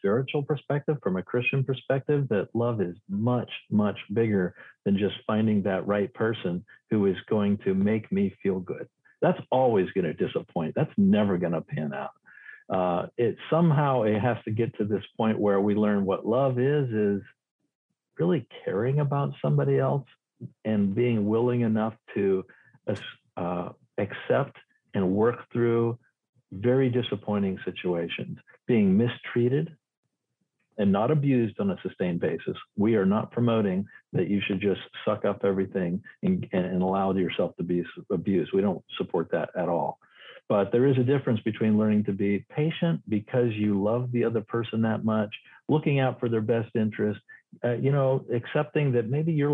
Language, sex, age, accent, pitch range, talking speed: English, male, 50-69, American, 105-140 Hz, 165 wpm